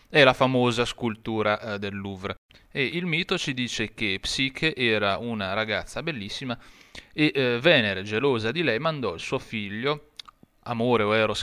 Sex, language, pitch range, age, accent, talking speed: male, Italian, 110-140 Hz, 30-49, native, 150 wpm